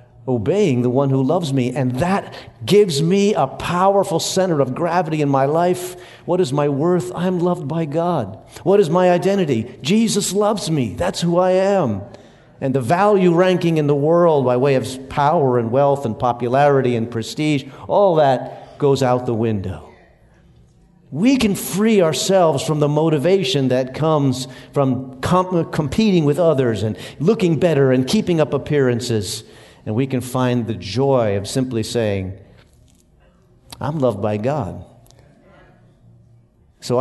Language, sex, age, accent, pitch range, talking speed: English, male, 50-69, American, 110-160 Hz, 150 wpm